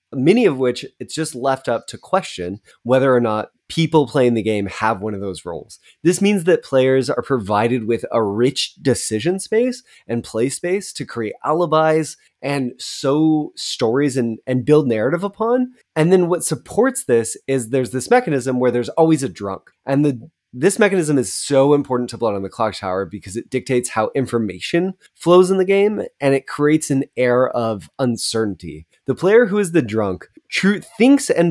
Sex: male